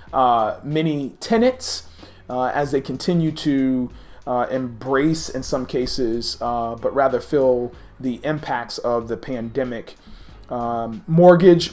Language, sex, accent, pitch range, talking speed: English, male, American, 125-165 Hz, 125 wpm